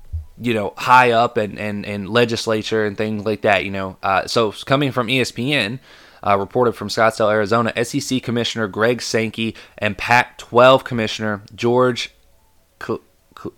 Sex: male